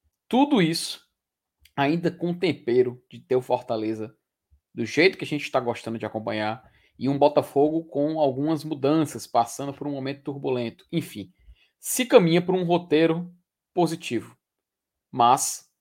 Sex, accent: male, Brazilian